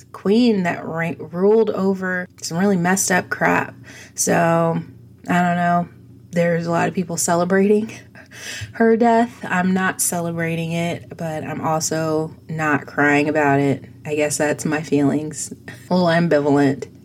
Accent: American